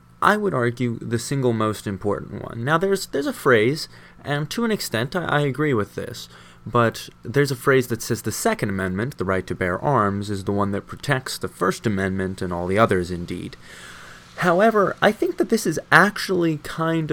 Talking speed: 200 wpm